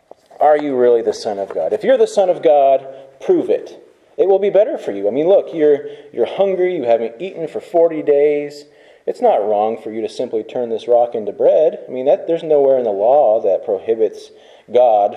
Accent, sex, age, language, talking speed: American, male, 30-49, English, 220 wpm